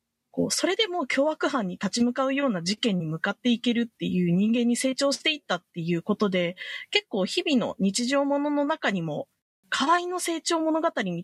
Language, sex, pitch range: Japanese, female, 180-295 Hz